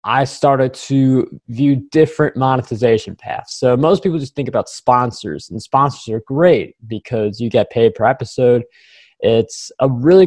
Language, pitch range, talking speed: English, 120-150 Hz, 160 wpm